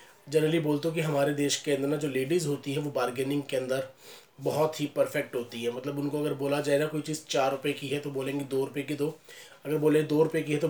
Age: 30-49